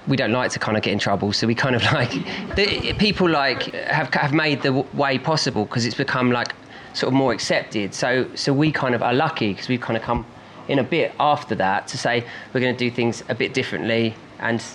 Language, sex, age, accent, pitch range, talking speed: English, male, 20-39, British, 115-135 Hz, 245 wpm